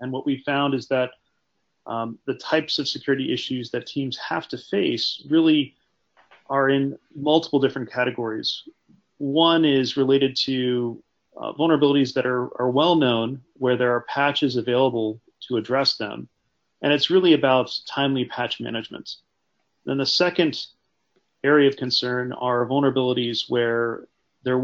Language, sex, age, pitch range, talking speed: English, male, 40-59, 120-145 Hz, 145 wpm